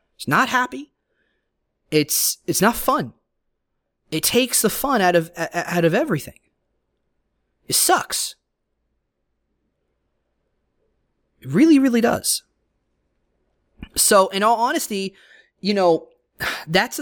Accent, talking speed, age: American, 100 wpm, 30-49